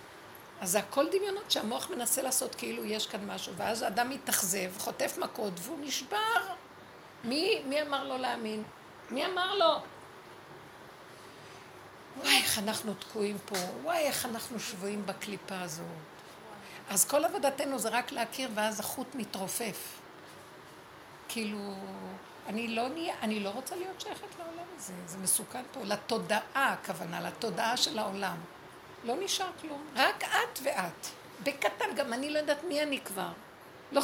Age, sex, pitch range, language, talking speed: 60-79, female, 215-320 Hz, Hebrew, 140 wpm